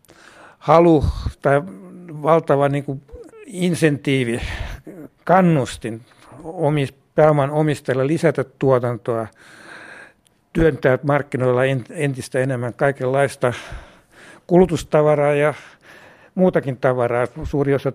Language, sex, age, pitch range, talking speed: Finnish, male, 60-79, 120-145 Hz, 70 wpm